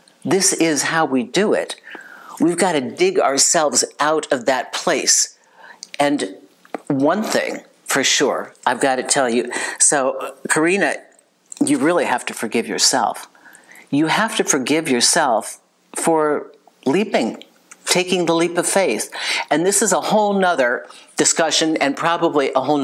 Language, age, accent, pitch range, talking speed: English, 50-69, American, 155-230 Hz, 145 wpm